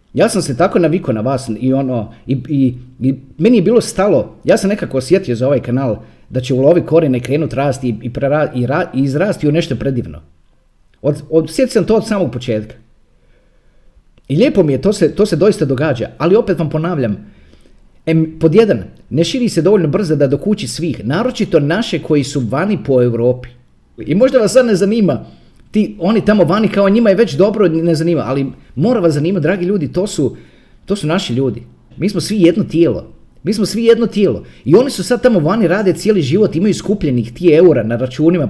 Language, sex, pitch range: Croatian, male, 125-190 Hz